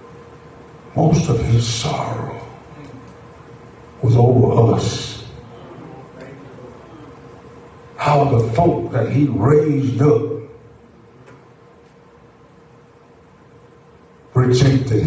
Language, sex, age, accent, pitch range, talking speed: English, male, 60-79, American, 120-170 Hz, 60 wpm